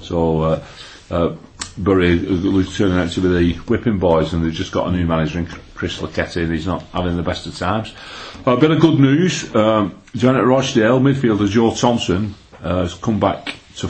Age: 40-59